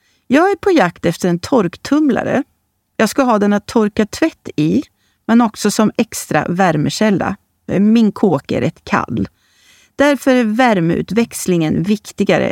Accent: native